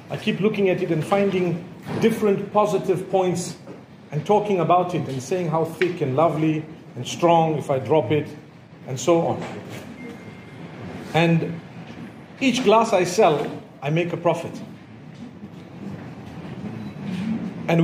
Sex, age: male, 40-59